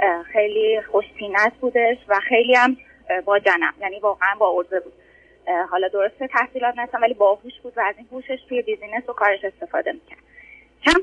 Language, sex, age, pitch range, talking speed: Persian, female, 20-39, 210-280 Hz, 170 wpm